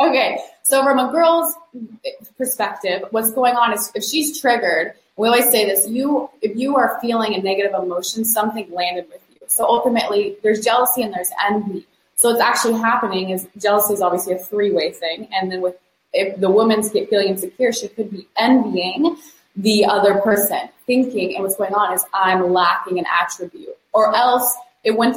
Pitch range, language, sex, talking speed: 185-240 Hz, English, female, 185 wpm